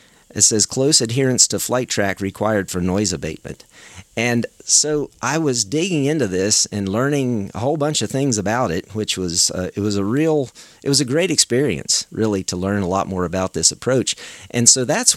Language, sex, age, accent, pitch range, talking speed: English, male, 40-59, American, 100-130 Hz, 200 wpm